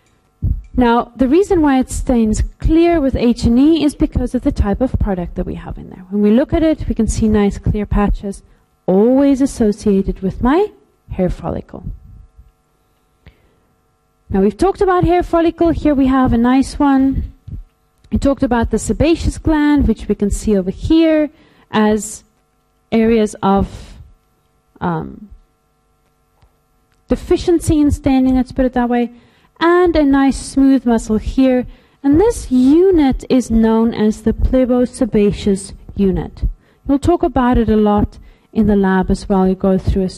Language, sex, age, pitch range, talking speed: English, female, 40-59, 205-275 Hz, 155 wpm